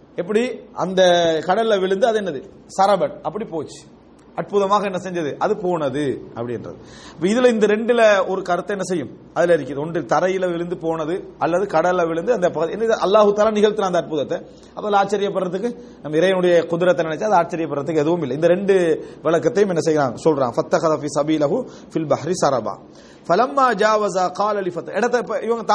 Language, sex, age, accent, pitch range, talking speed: English, male, 30-49, Indian, 175-220 Hz, 120 wpm